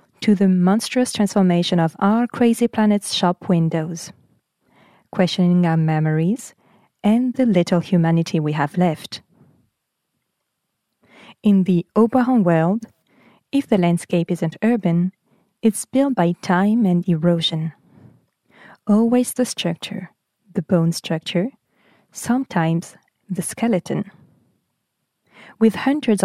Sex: female